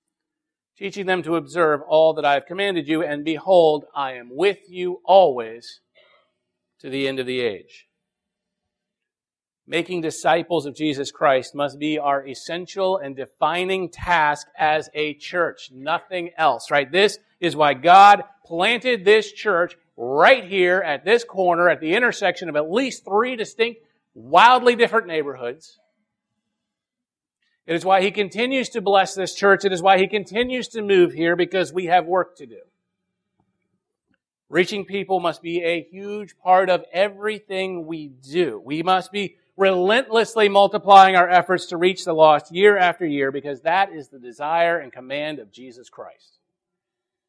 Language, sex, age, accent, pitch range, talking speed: English, male, 40-59, American, 155-195 Hz, 155 wpm